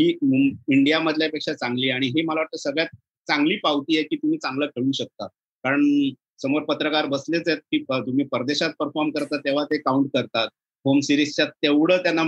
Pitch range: 135-165 Hz